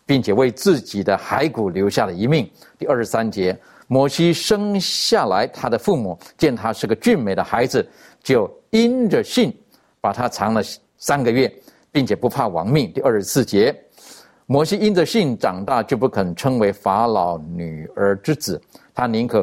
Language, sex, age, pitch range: Chinese, male, 50-69, 105-140 Hz